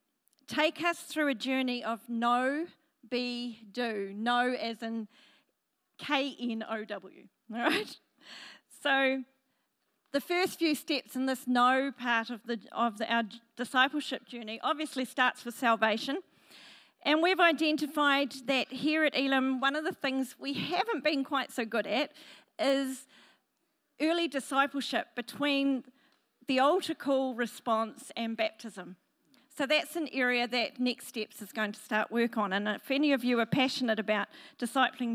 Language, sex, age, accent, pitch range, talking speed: English, female, 40-59, Australian, 235-290 Hz, 145 wpm